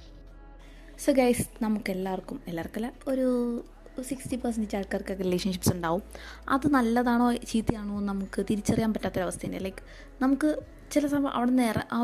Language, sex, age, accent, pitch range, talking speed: Malayalam, female, 20-39, native, 200-255 Hz, 130 wpm